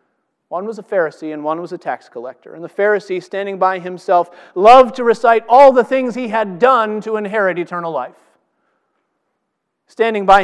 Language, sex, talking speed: English, male, 180 wpm